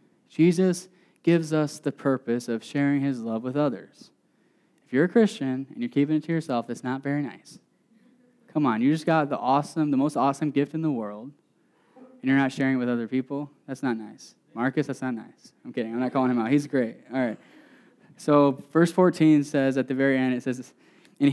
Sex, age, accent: male, 10-29, American